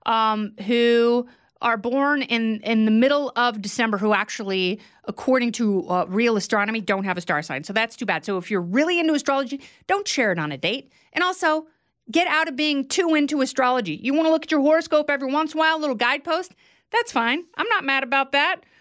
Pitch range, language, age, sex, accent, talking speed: 210-290 Hz, English, 30-49, female, American, 220 wpm